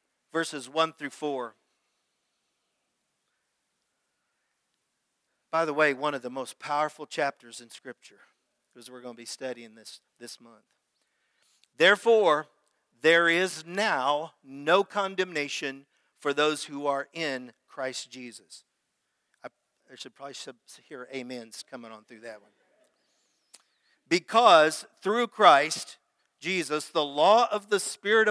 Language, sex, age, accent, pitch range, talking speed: English, male, 50-69, American, 145-185 Hz, 120 wpm